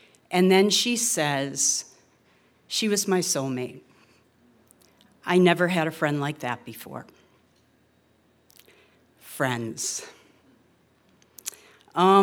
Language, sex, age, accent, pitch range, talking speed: English, female, 50-69, American, 150-190 Hz, 90 wpm